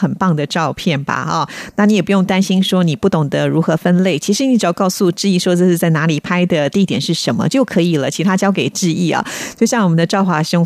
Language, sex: Japanese, female